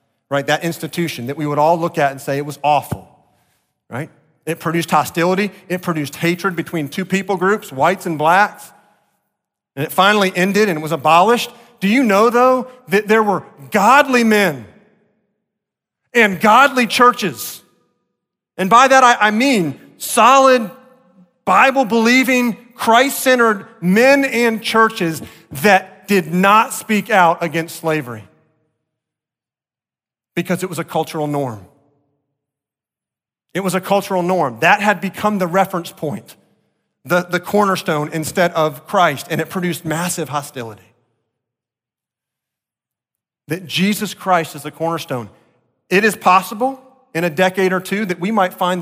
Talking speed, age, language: 140 wpm, 40-59, English